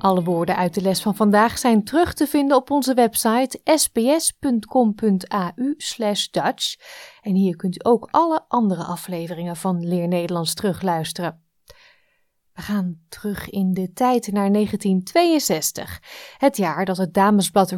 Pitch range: 190-265 Hz